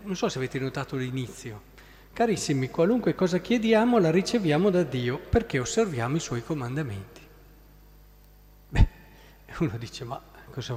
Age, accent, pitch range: 40-59, native, 130-185 Hz